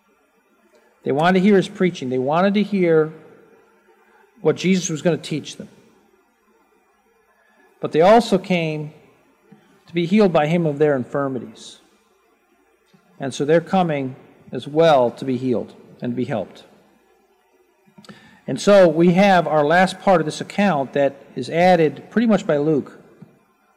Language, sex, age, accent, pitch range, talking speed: English, male, 50-69, American, 150-200 Hz, 150 wpm